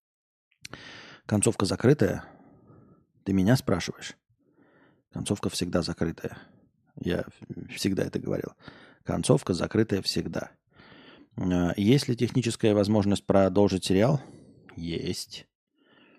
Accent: native